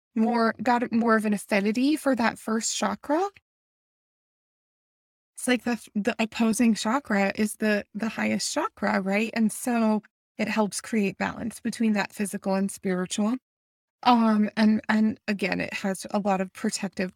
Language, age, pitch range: English, 20-39, 205-240 Hz